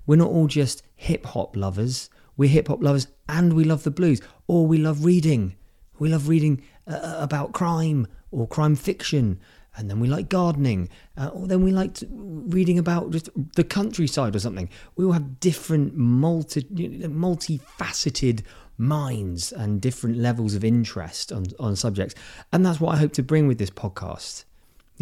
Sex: male